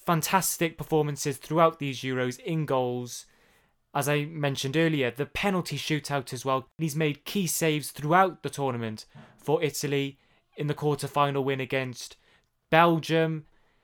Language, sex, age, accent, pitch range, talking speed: English, male, 20-39, British, 120-155 Hz, 135 wpm